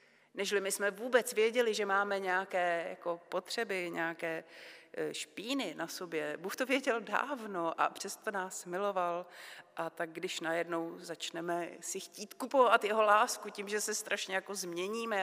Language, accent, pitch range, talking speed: Czech, native, 165-235 Hz, 150 wpm